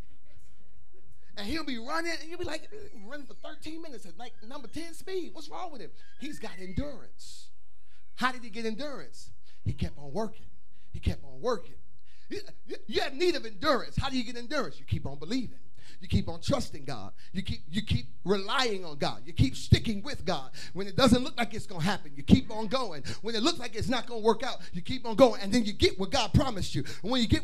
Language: English